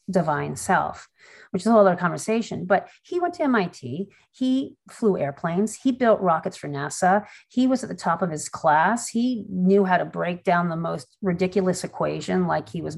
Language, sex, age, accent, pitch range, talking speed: English, female, 40-59, American, 185-265 Hz, 195 wpm